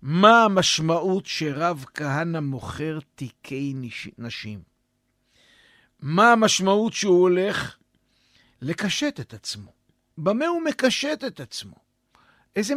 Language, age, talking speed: Hebrew, 50-69, 95 wpm